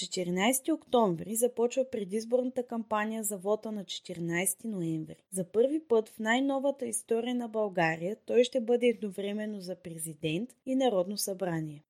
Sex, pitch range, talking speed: female, 190-245 Hz, 135 wpm